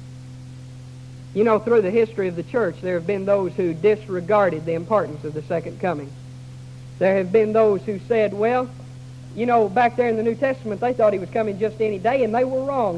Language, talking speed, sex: English, 215 wpm, female